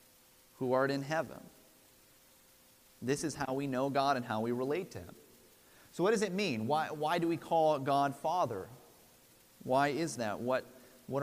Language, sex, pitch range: English, male, 125-155 Hz